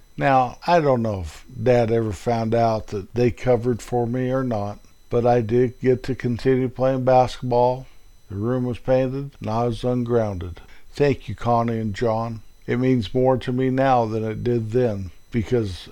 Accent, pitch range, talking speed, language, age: American, 105-125 Hz, 180 wpm, English, 50-69